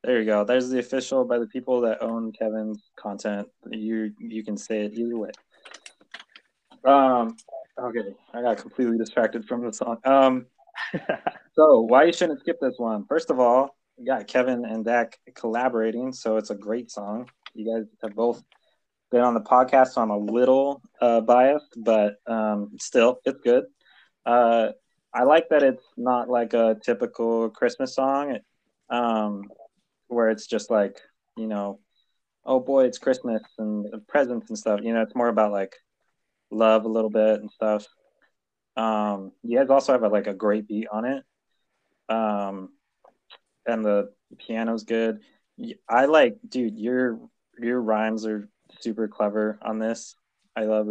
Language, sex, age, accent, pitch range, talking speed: English, male, 20-39, American, 110-125 Hz, 165 wpm